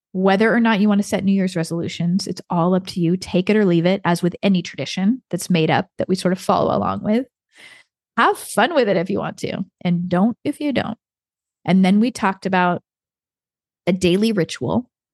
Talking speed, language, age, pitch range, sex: 220 wpm, English, 30-49, 180-220 Hz, female